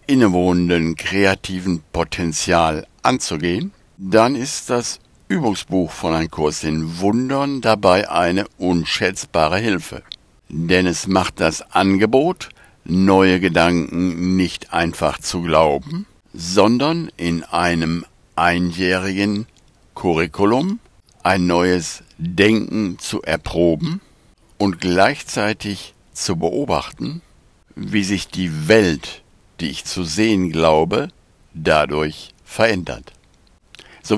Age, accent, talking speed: 60-79, German, 95 wpm